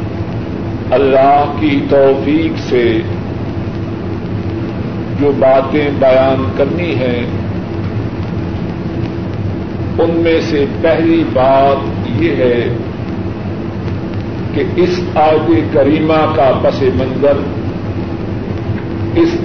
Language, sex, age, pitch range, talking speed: Urdu, male, 50-69, 110-140 Hz, 75 wpm